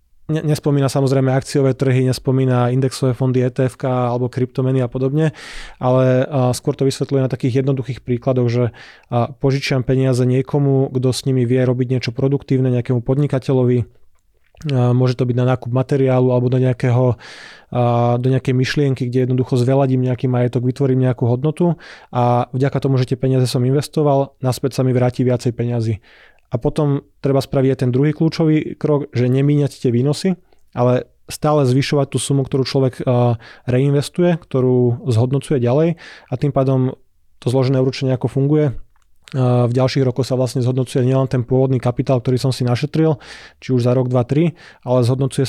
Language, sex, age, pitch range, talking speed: Slovak, male, 20-39, 125-135 Hz, 160 wpm